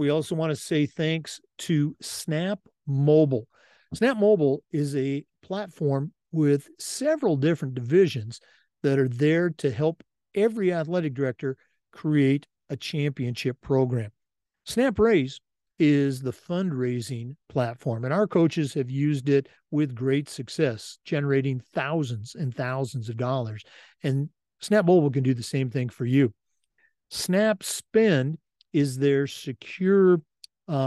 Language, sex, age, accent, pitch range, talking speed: English, male, 50-69, American, 130-165 Hz, 130 wpm